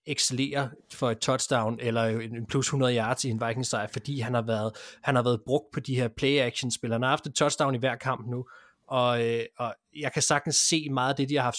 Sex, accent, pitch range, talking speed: male, native, 120-140 Hz, 245 wpm